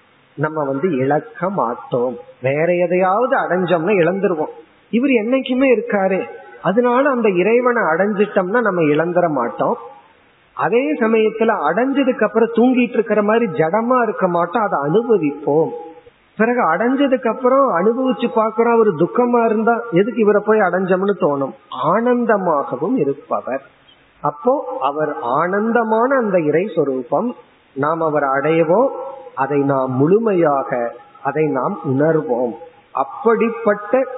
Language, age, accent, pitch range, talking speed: Tamil, 30-49, native, 160-230 Hz, 85 wpm